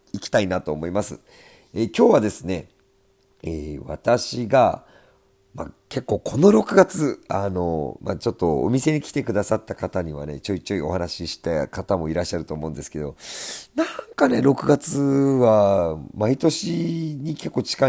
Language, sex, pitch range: Japanese, male, 85-145 Hz